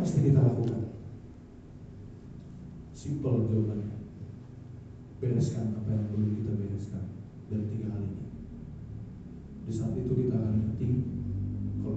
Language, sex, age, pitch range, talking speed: Indonesian, male, 40-59, 105-125 Hz, 110 wpm